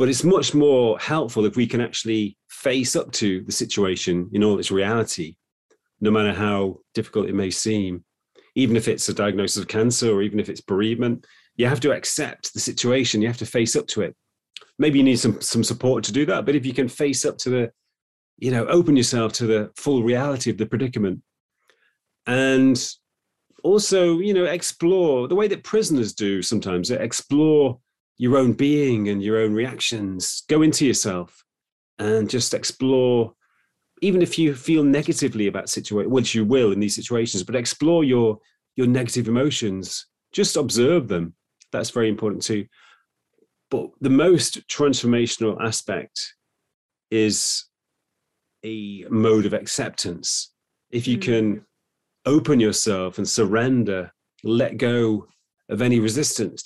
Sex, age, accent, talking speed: male, 30-49, British, 160 wpm